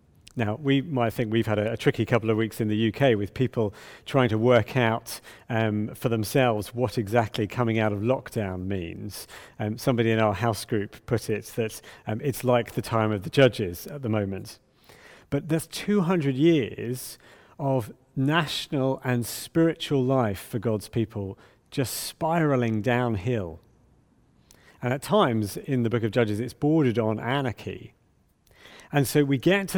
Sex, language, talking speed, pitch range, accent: male, English, 165 wpm, 110-140 Hz, British